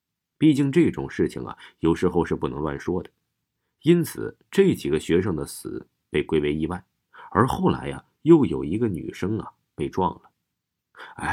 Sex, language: male, Chinese